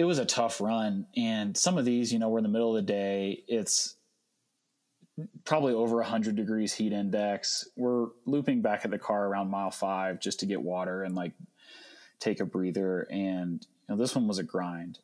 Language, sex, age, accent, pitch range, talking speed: English, male, 30-49, American, 100-120 Hz, 210 wpm